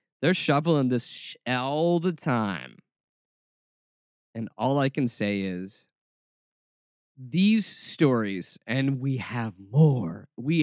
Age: 20-39